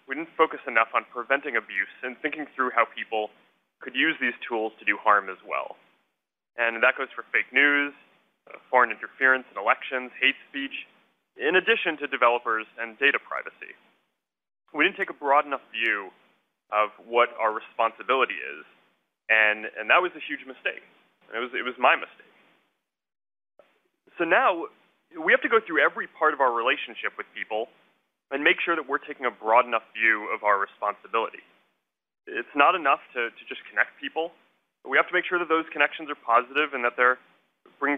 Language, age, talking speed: French, 20-39, 180 wpm